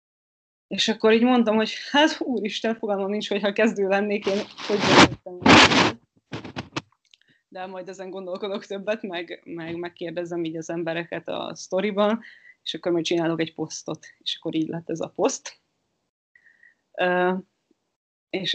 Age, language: 20-39, Hungarian